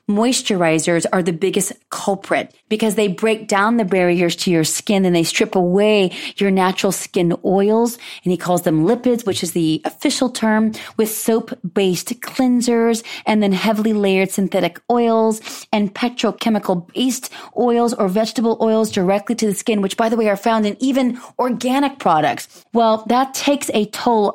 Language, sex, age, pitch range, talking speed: English, female, 30-49, 180-225 Hz, 170 wpm